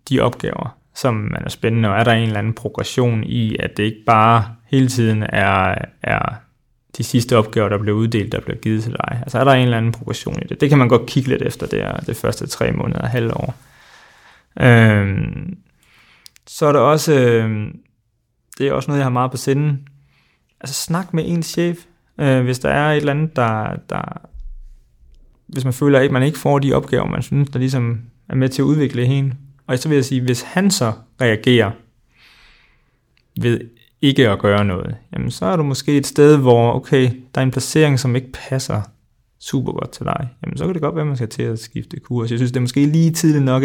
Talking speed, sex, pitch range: 215 wpm, male, 115-145 Hz